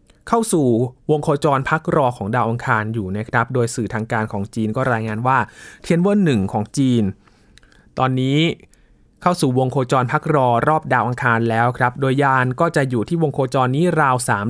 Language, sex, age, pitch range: Thai, male, 20-39, 120-155 Hz